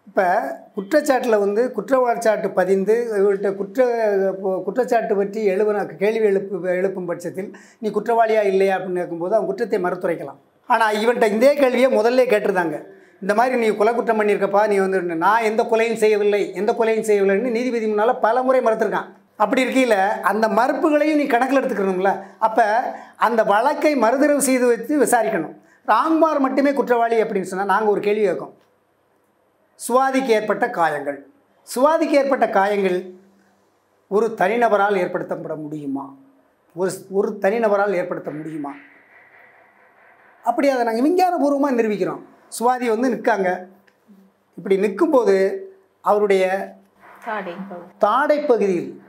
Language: Tamil